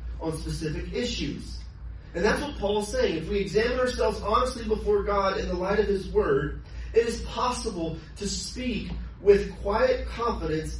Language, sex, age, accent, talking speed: English, male, 30-49, American, 160 wpm